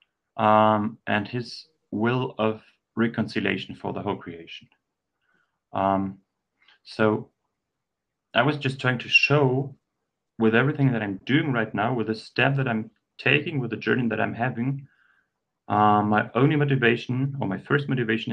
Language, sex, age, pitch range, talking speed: English, male, 30-49, 105-130 Hz, 145 wpm